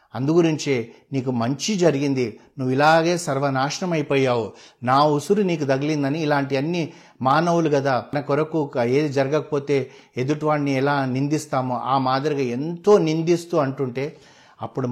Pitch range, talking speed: 130-160 Hz, 115 wpm